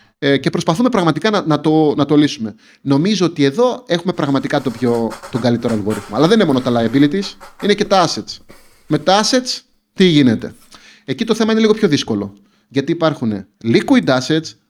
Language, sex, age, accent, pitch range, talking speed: Greek, male, 30-49, native, 115-165 Hz, 180 wpm